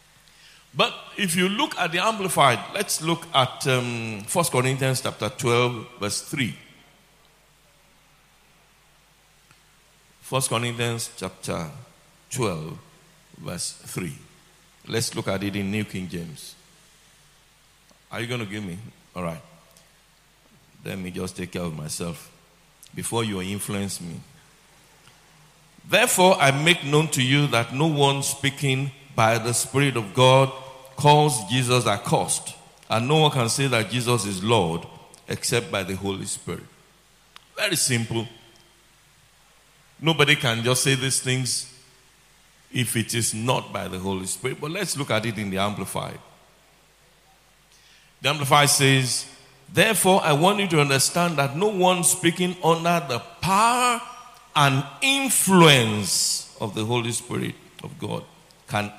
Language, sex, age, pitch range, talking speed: English, male, 60-79, 115-165 Hz, 135 wpm